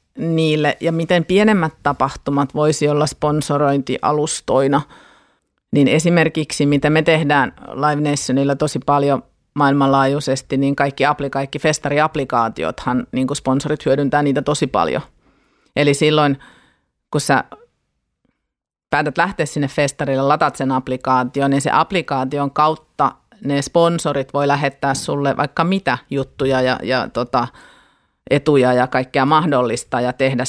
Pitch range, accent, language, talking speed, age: 135-155 Hz, native, Finnish, 120 wpm, 30-49